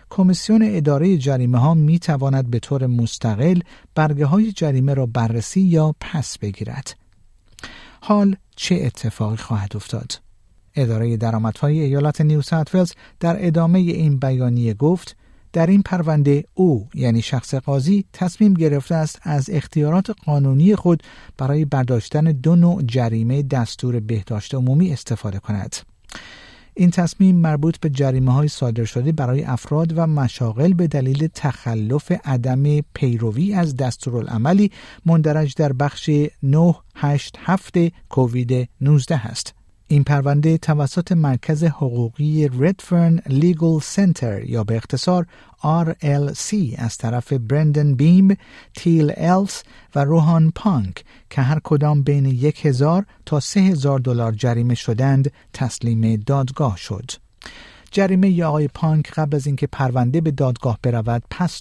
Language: Persian